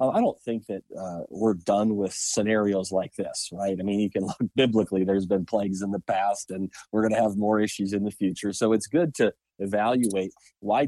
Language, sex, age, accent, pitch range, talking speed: English, male, 30-49, American, 100-115 Hz, 220 wpm